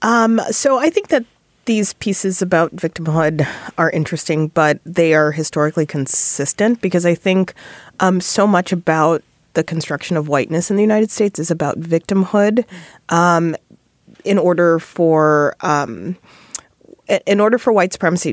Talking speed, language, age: 145 wpm, English, 30-49